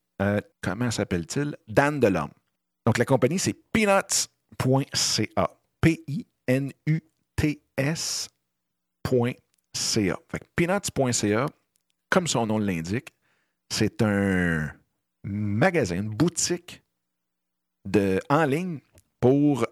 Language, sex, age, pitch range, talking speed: French, male, 50-69, 100-150 Hz, 80 wpm